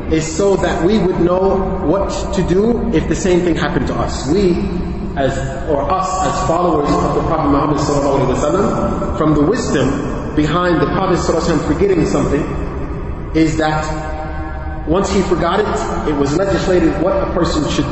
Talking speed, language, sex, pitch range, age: 160 wpm, English, male, 135-180 Hz, 30-49